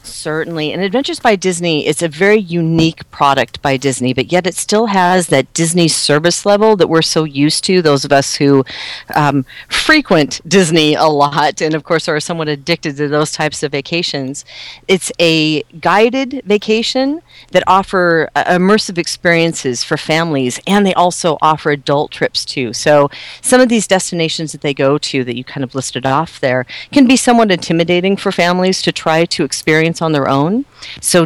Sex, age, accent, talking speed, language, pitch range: female, 40-59, American, 180 wpm, English, 140-175 Hz